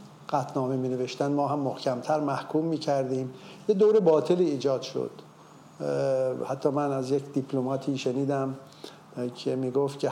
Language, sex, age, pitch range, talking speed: Persian, male, 50-69, 130-160 Hz, 140 wpm